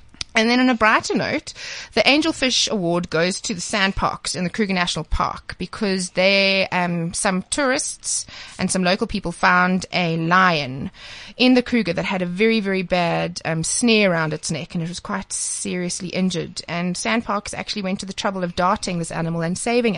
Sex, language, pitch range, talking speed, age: female, English, 175-225 Hz, 190 wpm, 20-39